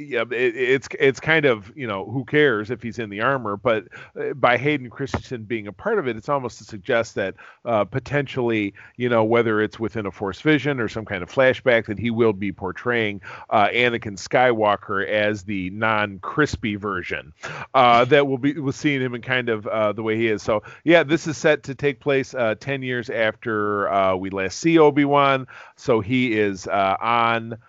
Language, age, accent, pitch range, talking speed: English, 40-59, American, 105-140 Hz, 200 wpm